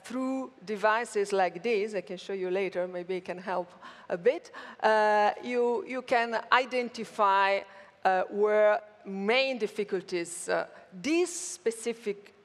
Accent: Italian